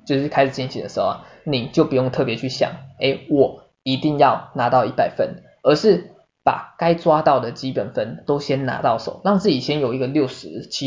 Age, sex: 20-39, male